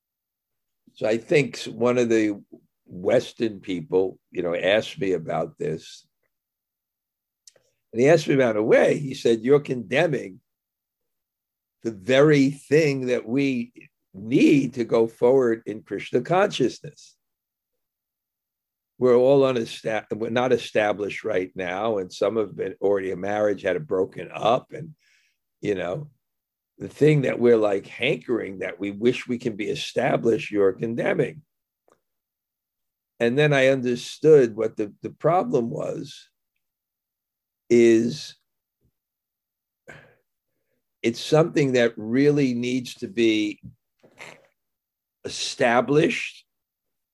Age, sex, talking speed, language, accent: 50-69, male, 115 wpm, English, American